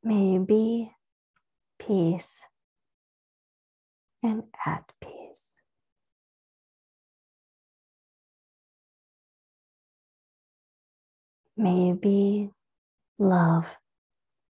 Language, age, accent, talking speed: English, 30-49, American, 45 wpm